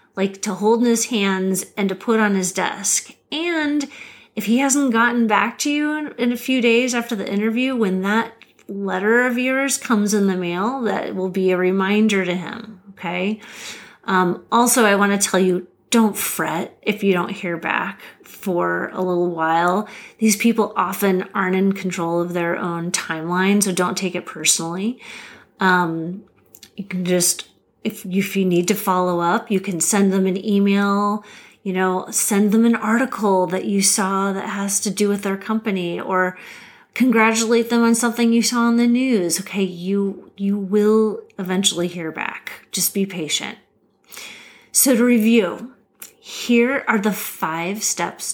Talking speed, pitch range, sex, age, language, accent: 170 wpm, 185-230 Hz, female, 30-49, English, American